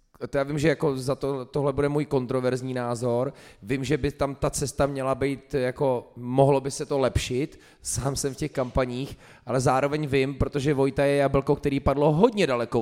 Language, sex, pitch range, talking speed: Czech, male, 120-140 Hz, 195 wpm